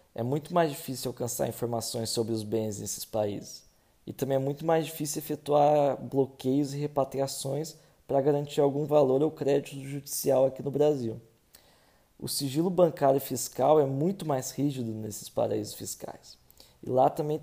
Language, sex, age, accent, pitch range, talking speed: Portuguese, male, 20-39, Brazilian, 135-165 Hz, 160 wpm